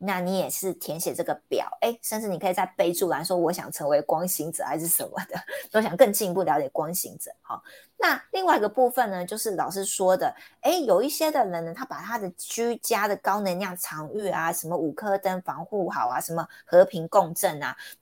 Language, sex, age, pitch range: Chinese, female, 20-39, 170-215 Hz